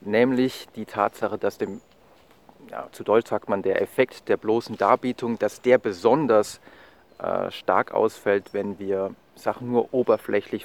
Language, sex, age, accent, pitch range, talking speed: German, male, 30-49, German, 100-130 Hz, 145 wpm